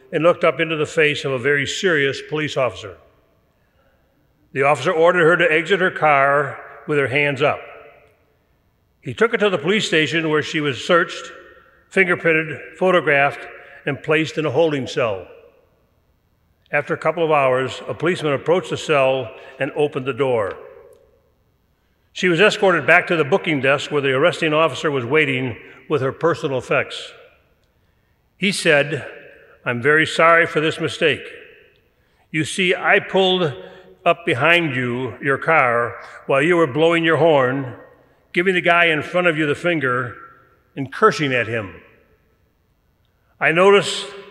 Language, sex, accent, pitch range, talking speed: English, male, American, 140-185 Hz, 155 wpm